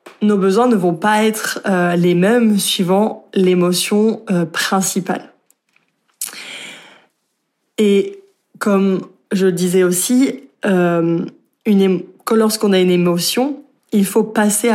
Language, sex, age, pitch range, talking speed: French, female, 20-39, 185-220 Hz, 120 wpm